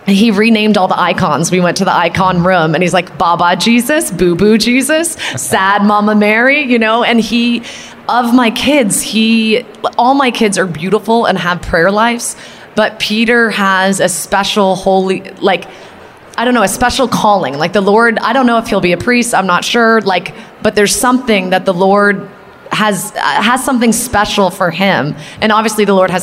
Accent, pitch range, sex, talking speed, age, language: American, 180-225 Hz, female, 195 wpm, 20-39, English